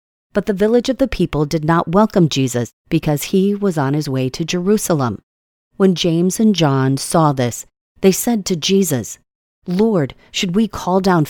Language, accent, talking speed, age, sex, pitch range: English, American, 175 wpm, 40-59, female, 130-190 Hz